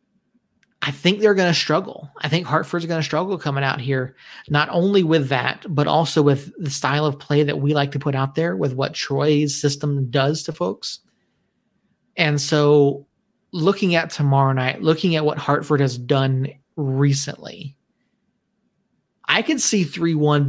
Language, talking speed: English, 165 wpm